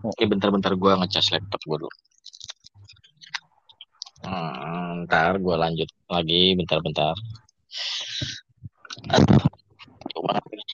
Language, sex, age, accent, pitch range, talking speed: Indonesian, male, 20-39, native, 100-120 Hz, 95 wpm